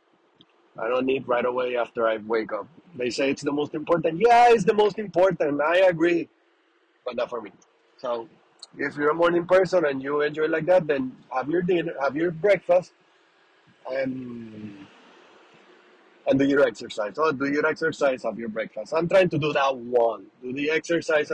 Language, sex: English, male